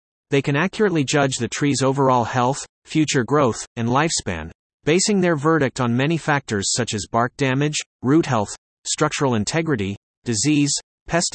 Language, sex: English, male